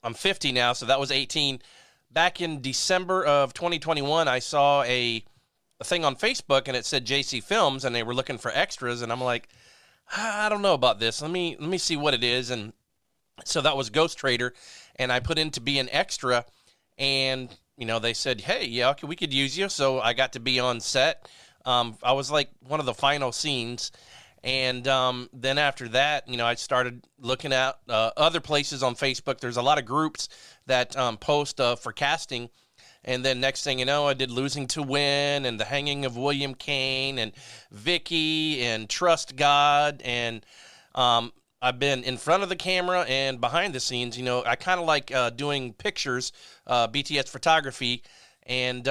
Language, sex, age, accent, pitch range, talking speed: English, male, 30-49, American, 125-145 Hz, 200 wpm